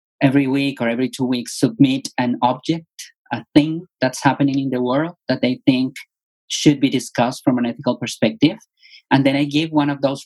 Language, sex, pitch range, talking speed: English, male, 115-145 Hz, 195 wpm